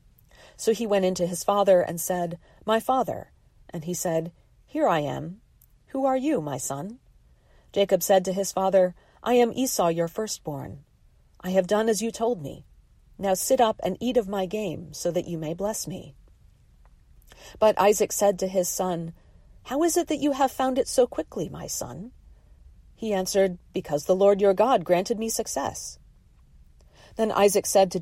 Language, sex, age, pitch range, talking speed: English, female, 40-59, 160-225 Hz, 180 wpm